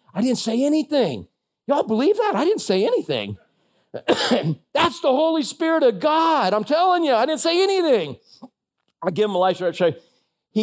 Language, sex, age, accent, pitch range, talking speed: English, male, 50-69, American, 140-220 Hz, 175 wpm